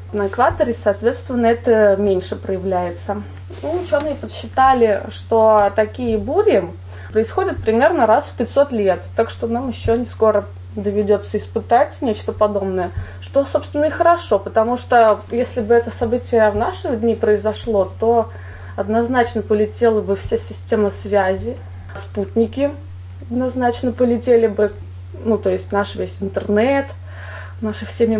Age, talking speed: 20-39, 130 wpm